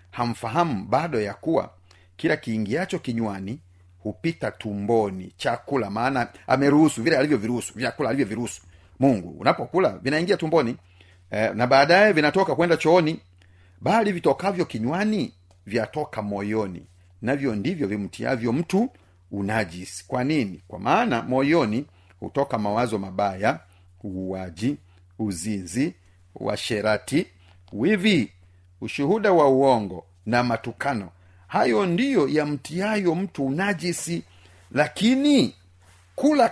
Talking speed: 105 wpm